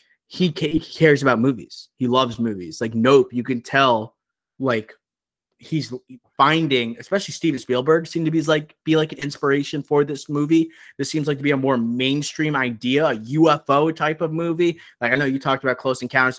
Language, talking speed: English, 185 wpm